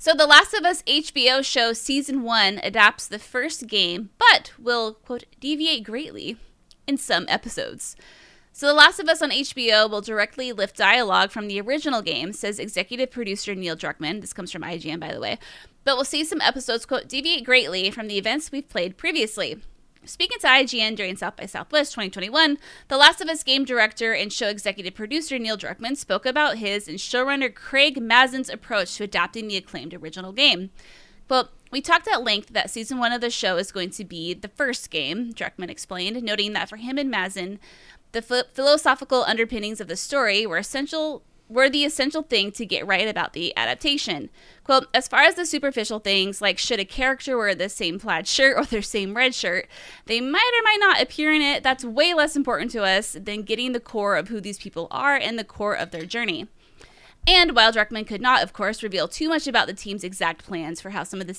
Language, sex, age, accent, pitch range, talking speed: English, female, 20-39, American, 200-280 Hz, 205 wpm